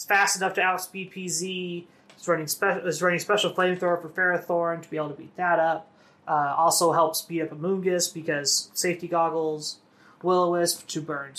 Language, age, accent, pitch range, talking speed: English, 20-39, American, 160-190 Hz, 175 wpm